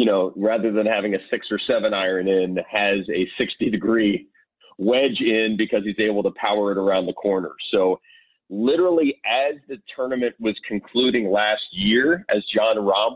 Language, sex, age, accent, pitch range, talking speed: English, male, 30-49, American, 100-135 Hz, 175 wpm